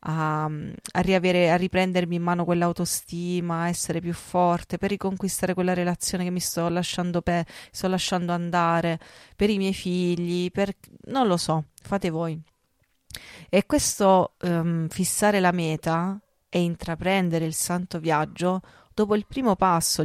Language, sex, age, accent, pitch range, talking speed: Italian, female, 30-49, native, 160-185 Hz, 145 wpm